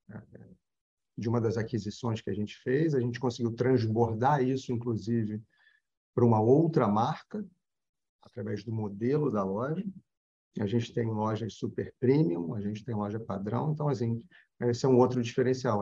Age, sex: 40-59, male